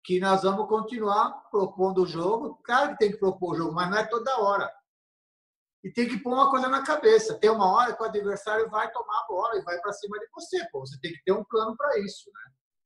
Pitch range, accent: 190-255 Hz, Brazilian